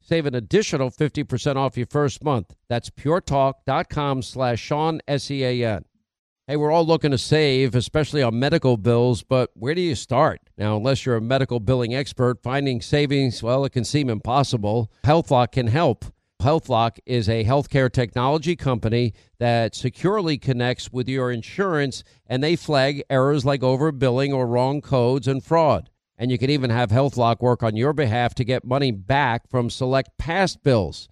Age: 50-69